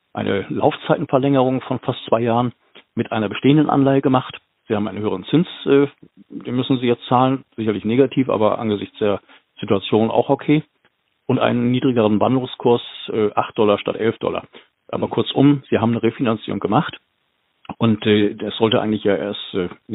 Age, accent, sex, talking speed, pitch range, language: 50-69, German, male, 170 wpm, 110-130 Hz, German